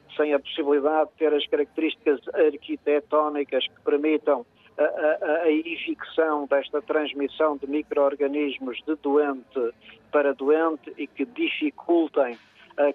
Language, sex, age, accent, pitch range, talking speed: Portuguese, male, 50-69, Portuguese, 140-160 Hz, 120 wpm